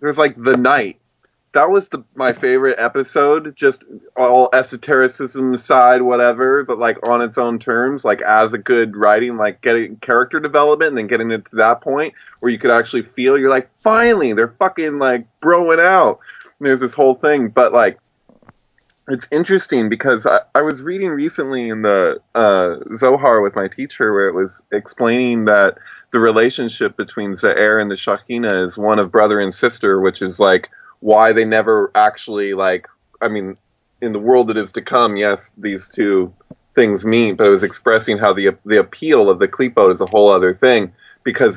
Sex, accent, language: male, American, English